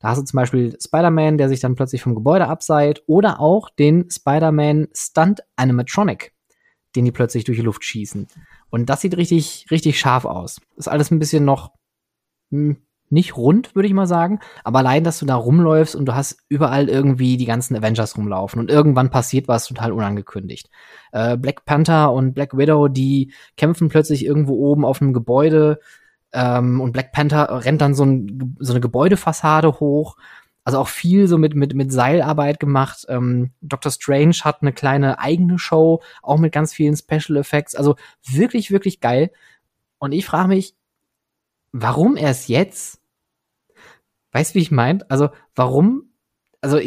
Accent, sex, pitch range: German, male, 130-160 Hz